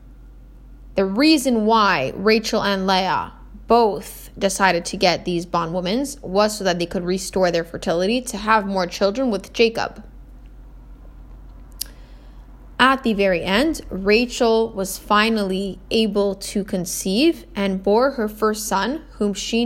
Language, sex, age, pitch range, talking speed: English, female, 10-29, 190-230 Hz, 130 wpm